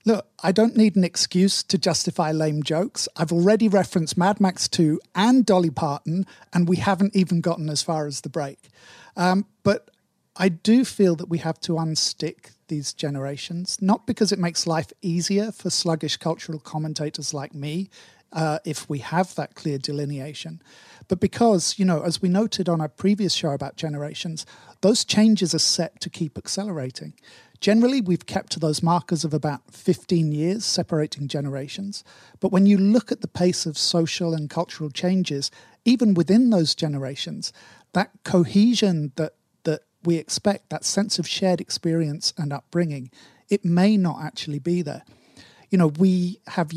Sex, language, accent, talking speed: male, English, British, 170 wpm